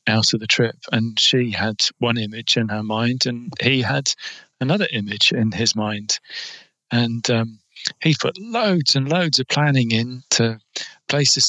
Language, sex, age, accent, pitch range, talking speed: English, male, 40-59, British, 110-130 Hz, 165 wpm